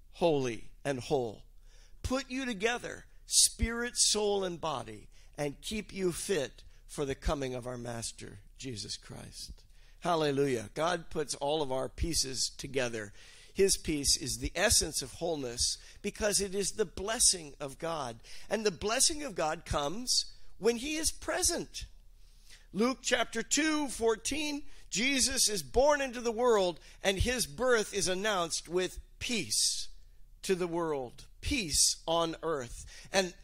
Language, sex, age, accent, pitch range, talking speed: English, male, 50-69, American, 155-235 Hz, 140 wpm